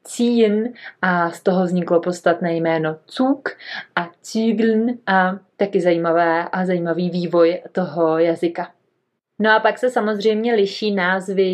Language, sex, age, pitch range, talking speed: Czech, female, 30-49, 175-215 Hz, 130 wpm